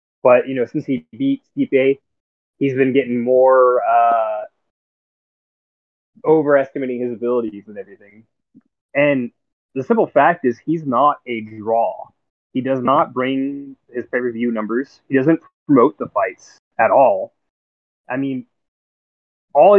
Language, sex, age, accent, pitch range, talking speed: English, male, 20-39, American, 115-155 Hz, 135 wpm